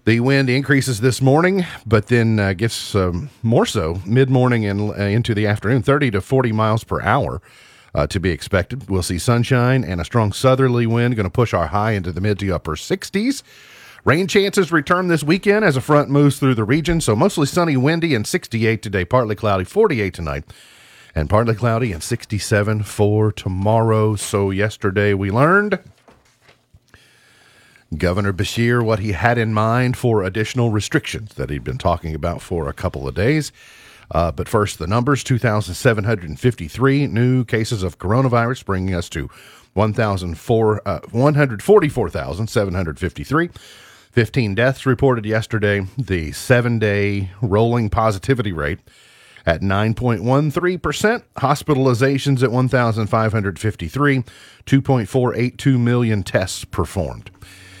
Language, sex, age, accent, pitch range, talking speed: English, male, 40-59, American, 100-130 Hz, 140 wpm